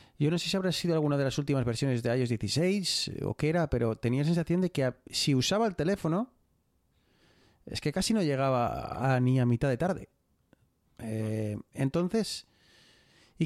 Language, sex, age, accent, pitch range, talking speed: Spanish, male, 30-49, Spanish, 130-165 Hz, 185 wpm